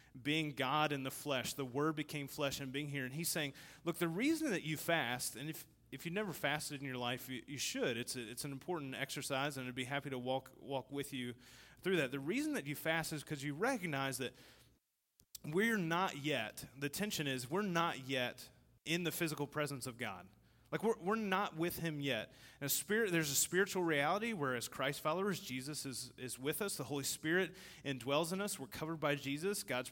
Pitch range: 130-160 Hz